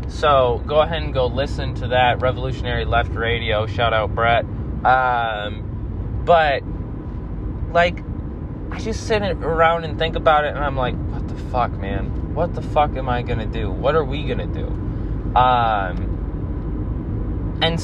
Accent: American